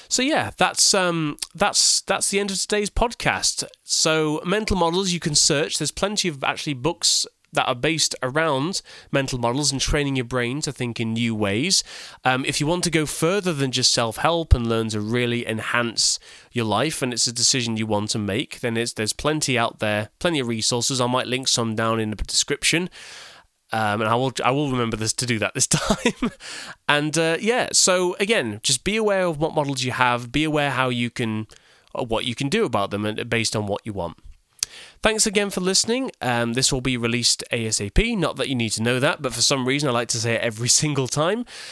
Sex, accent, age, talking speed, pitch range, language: male, British, 20-39, 215 wpm, 115-165 Hz, English